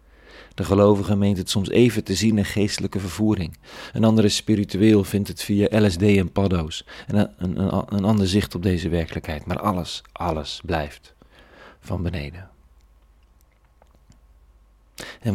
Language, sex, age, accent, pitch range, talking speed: Dutch, male, 40-59, Dutch, 85-100 Hz, 145 wpm